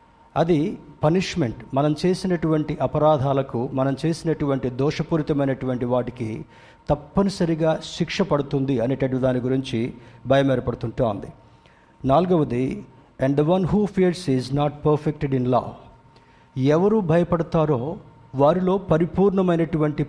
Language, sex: Telugu, male